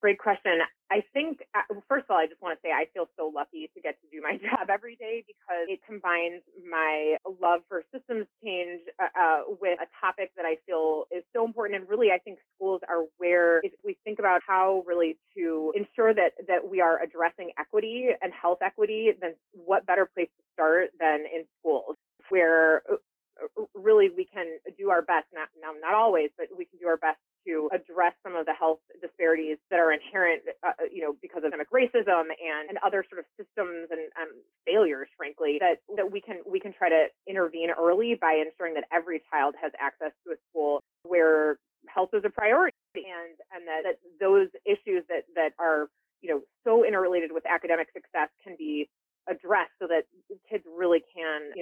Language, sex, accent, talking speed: English, female, American, 195 wpm